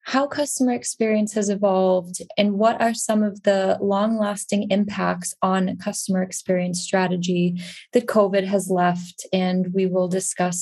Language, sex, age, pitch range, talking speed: English, female, 20-39, 185-215 Hz, 145 wpm